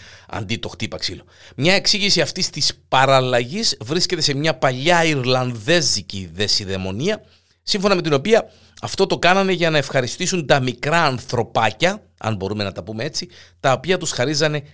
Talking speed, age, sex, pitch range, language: 155 wpm, 50-69, male, 100-160 Hz, Greek